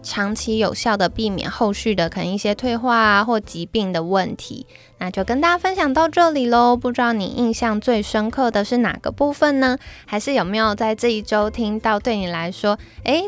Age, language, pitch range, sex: 10-29, Chinese, 210-260 Hz, female